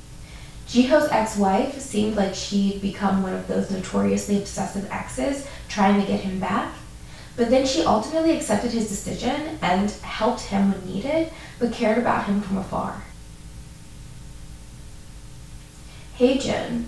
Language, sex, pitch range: English, female, 185-240 Hz